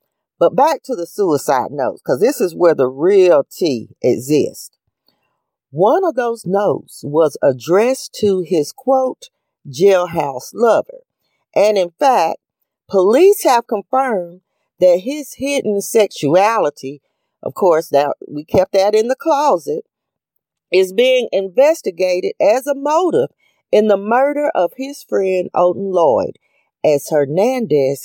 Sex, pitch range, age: female, 175-270 Hz, 40-59